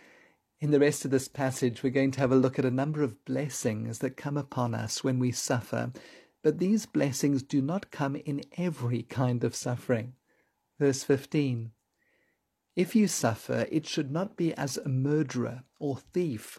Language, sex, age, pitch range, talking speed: English, male, 50-69, 130-165 Hz, 175 wpm